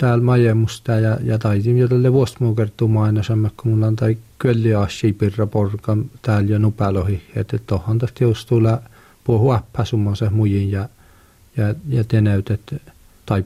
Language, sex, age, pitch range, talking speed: Finnish, male, 50-69, 100-120 Hz, 120 wpm